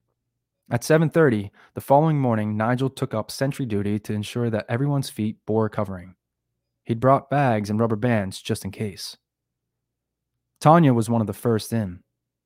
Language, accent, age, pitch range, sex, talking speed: English, American, 20-39, 95-120 Hz, male, 160 wpm